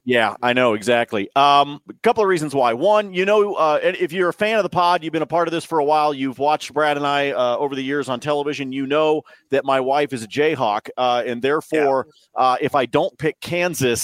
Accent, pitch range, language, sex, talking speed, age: American, 130-170 Hz, English, male, 250 wpm, 40-59